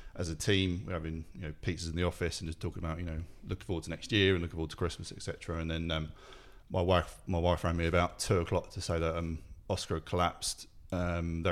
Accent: British